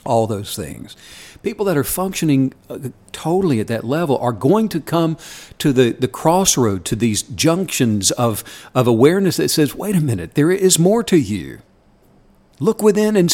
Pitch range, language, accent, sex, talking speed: 110-155 Hz, English, American, male, 170 wpm